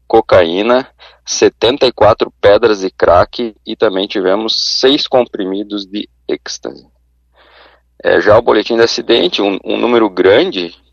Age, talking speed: 20-39, 120 wpm